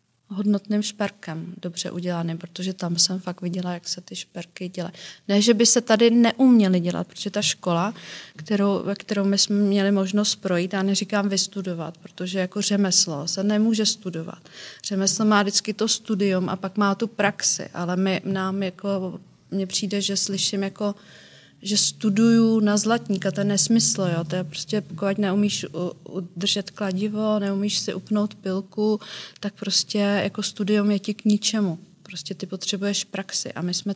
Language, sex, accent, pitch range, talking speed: Czech, female, native, 185-205 Hz, 160 wpm